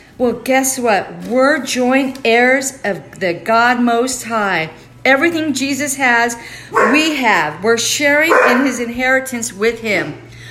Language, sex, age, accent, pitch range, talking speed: English, female, 50-69, American, 185-240 Hz, 130 wpm